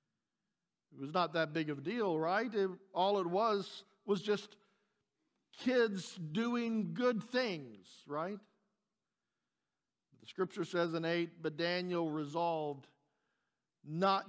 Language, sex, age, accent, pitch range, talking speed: English, male, 50-69, American, 180-225 Hz, 120 wpm